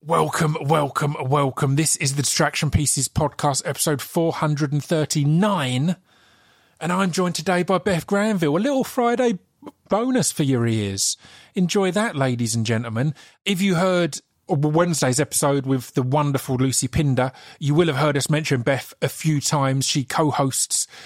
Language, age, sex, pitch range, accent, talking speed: English, 30-49, male, 135-165 Hz, British, 150 wpm